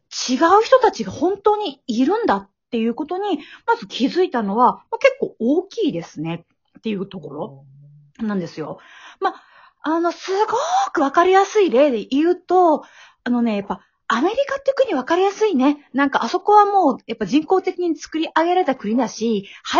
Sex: female